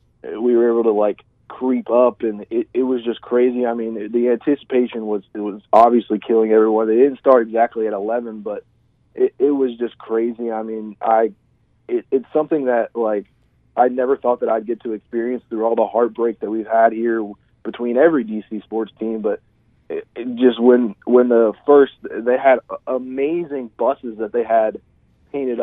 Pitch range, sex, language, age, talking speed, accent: 110-125 Hz, male, English, 30-49, 190 wpm, American